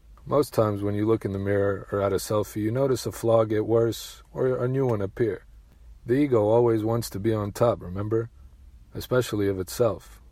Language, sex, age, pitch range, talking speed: English, male, 40-59, 95-120 Hz, 205 wpm